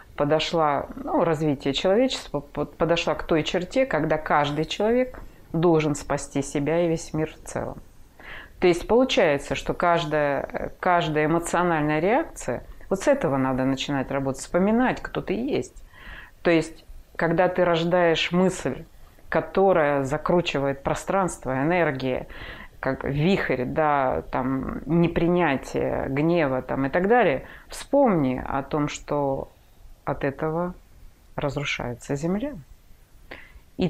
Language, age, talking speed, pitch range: Russian, 30-49, 115 wpm, 140-175 Hz